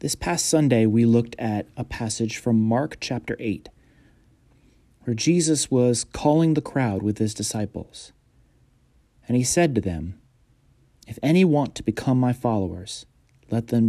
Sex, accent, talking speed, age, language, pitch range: male, American, 150 wpm, 30-49, English, 105-135 Hz